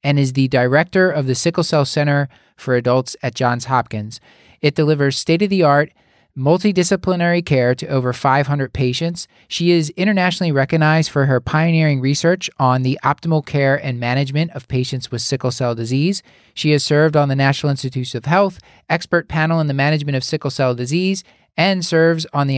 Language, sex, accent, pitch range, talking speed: English, male, American, 130-165 Hz, 175 wpm